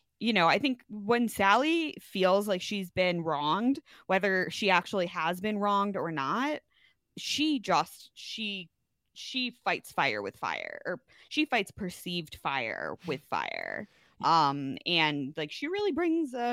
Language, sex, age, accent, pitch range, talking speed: English, female, 20-39, American, 165-255 Hz, 150 wpm